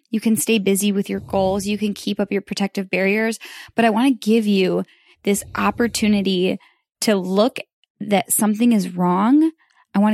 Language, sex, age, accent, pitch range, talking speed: English, female, 10-29, American, 185-225 Hz, 180 wpm